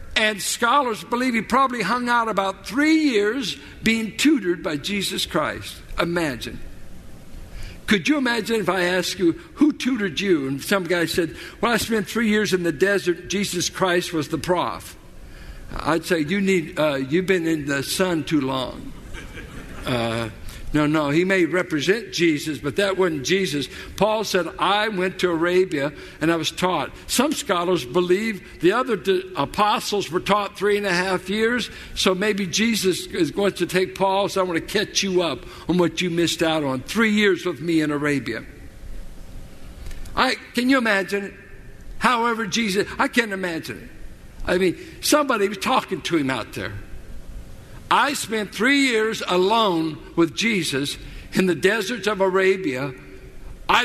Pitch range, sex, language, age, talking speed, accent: 160-215 Hz, male, English, 60-79, 165 wpm, American